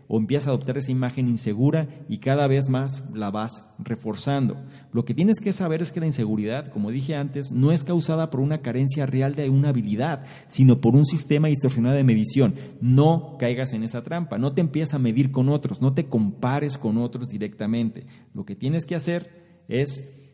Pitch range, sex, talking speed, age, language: 115-140 Hz, male, 200 wpm, 40-59, Spanish